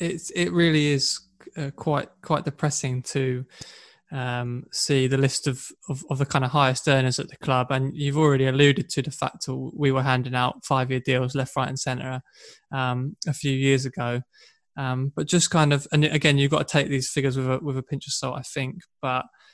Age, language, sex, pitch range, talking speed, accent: 20-39, English, male, 130-145 Hz, 210 wpm, British